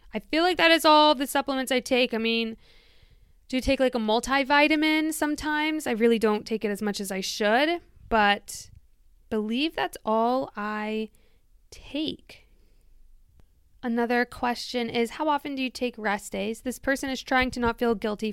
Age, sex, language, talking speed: 20-39, female, English, 175 wpm